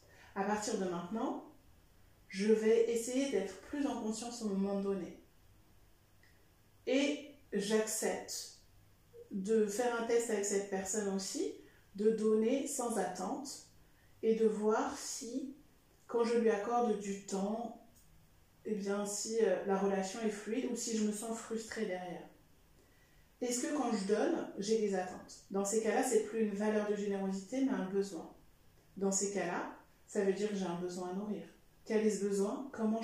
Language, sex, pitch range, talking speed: French, female, 195-235 Hz, 160 wpm